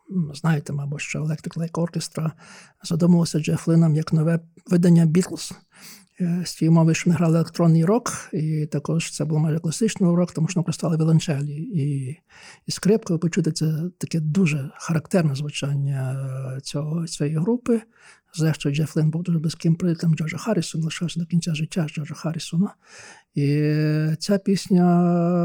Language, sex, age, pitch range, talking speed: Ukrainian, male, 50-69, 155-185 Hz, 145 wpm